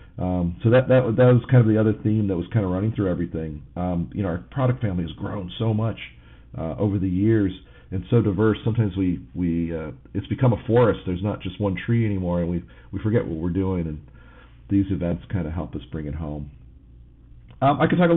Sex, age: male, 50-69